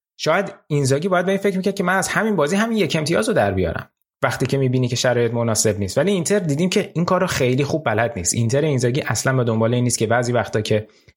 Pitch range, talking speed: 110-150 Hz, 240 wpm